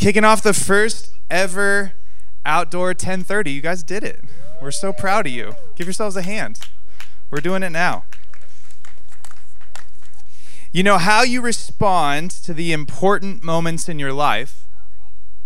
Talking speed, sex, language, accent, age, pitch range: 140 wpm, male, English, American, 20-39, 125-185 Hz